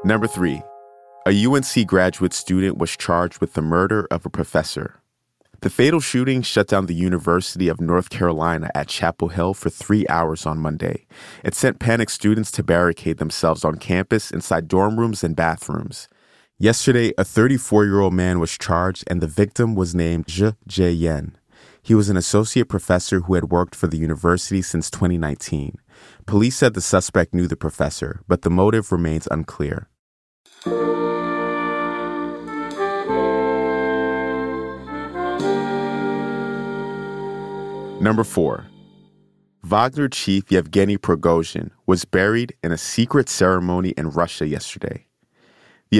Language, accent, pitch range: English, American, 85-110 Hz